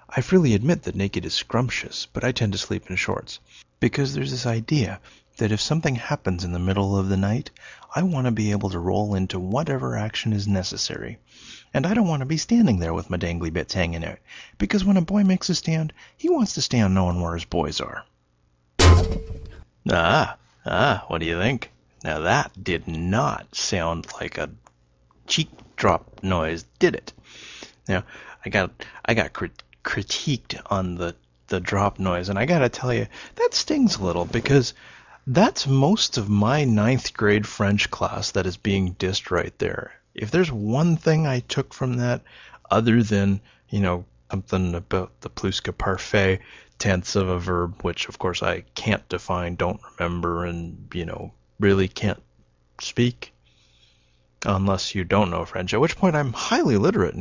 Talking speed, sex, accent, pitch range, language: 180 wpm, male, American, 90-120 Hz, English